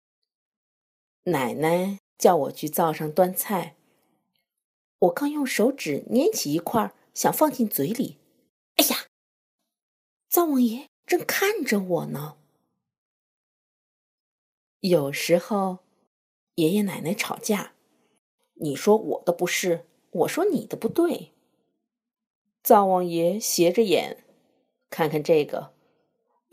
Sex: female